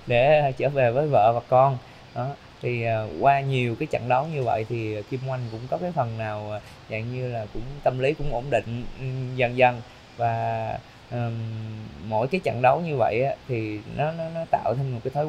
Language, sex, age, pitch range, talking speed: Vietnamese, male, 20-39, 120-150 Hz, 210 wpm